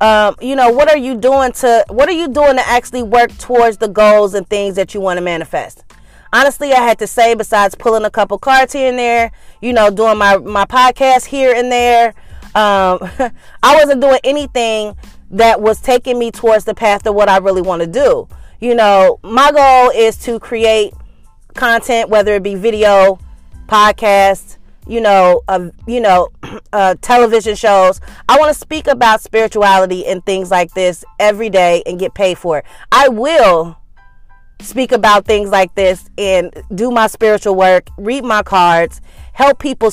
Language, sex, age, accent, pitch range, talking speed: English, female, 30-49, American, 195-250 Hz, 180 wpm